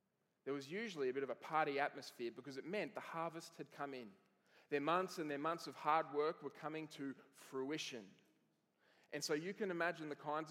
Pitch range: 135-165 Hz